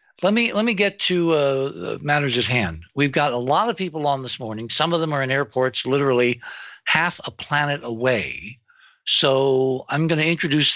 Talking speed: 195 wpm